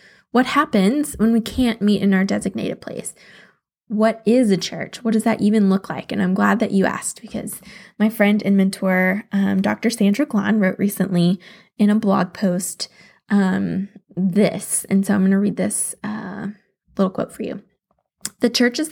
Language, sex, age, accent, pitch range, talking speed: English, female, 10-29, American, 195-220 Hz, 185 wpm